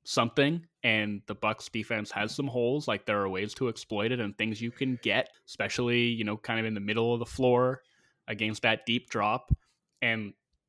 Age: 20-39